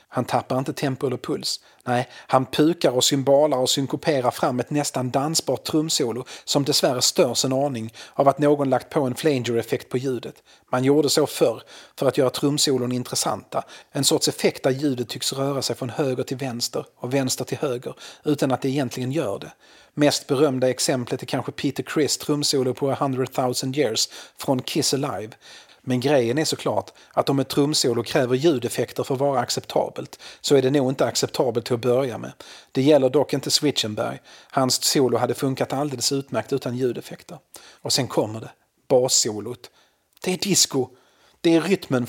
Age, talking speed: 40-59, 180 wpm